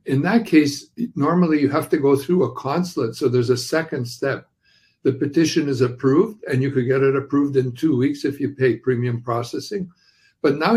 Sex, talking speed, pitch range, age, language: male, 200 wpm, 125-155 Hz, 60-79, English